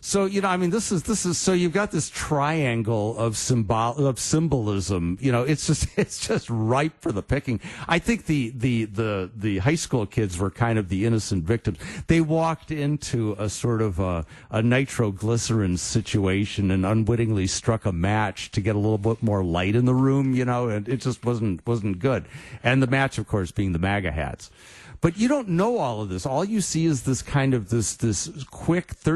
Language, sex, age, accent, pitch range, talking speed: English, male, 50-69, American, 100-135 Hz, 210 wpm